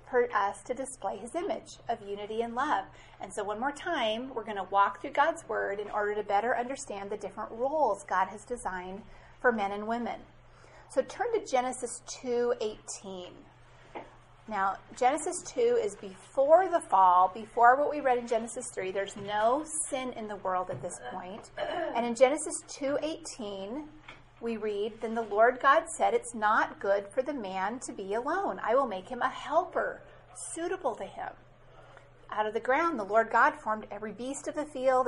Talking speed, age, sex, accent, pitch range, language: 185 wpm, 30-49, female, American, 210-280 Hz, English